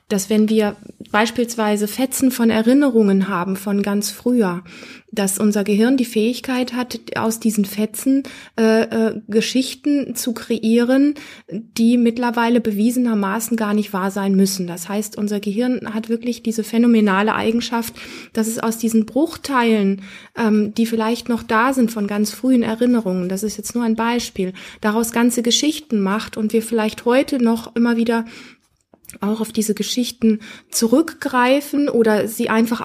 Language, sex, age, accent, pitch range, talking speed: German, female, 20-39, German, 215-250 Hz, 150 wpm